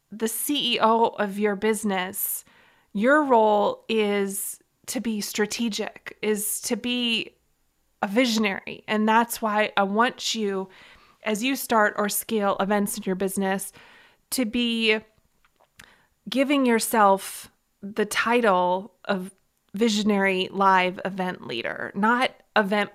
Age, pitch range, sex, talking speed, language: 20-39, 195-235 Hz, female, 115 wpm, English